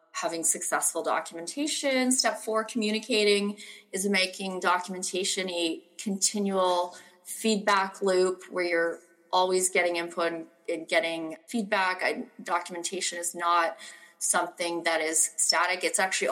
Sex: female